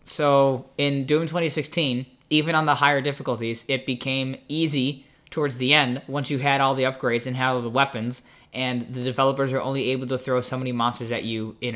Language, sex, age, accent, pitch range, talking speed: English, male, 20-39, American, 125-165 Hz, 205 wpm